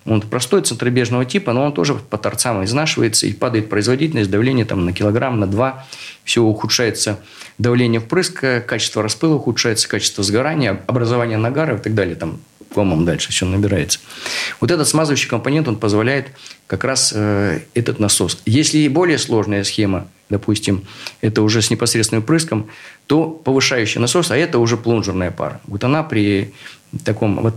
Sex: male